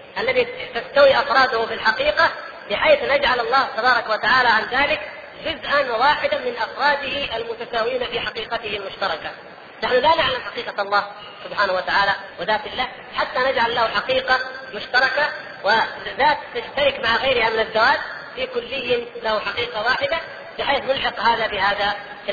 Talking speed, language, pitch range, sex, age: 135 wpm, Arabic, 215-280 Hz, female, 30-49